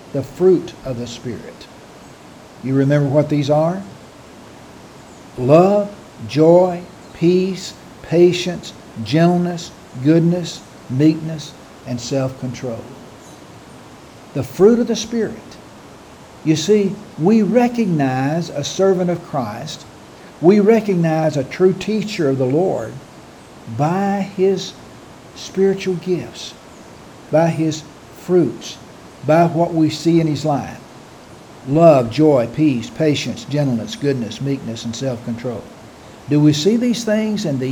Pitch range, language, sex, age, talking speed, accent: 135-180 Hz, English, male, 60-79, 110 wpm, American